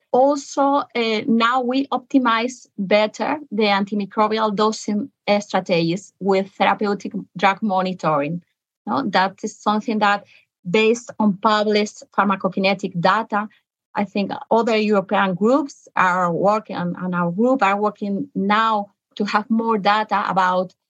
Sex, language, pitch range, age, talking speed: female, English, 190-225 Hz, 30-49, 120 wpm